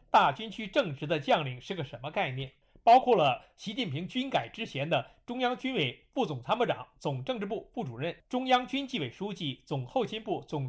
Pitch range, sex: 150-230 Hz, male